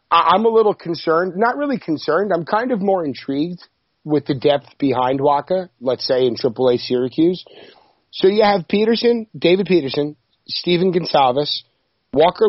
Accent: American